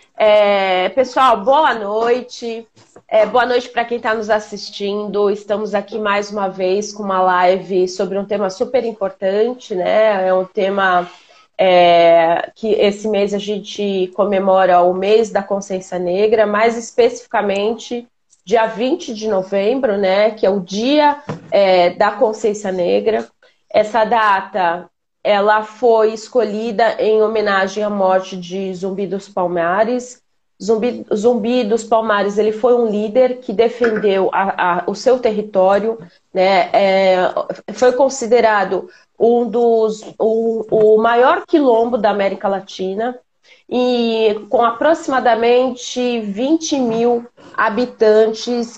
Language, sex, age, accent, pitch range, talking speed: Portuguese, female, 20-39, Brazilian, 195-235 Hz, 125 wpm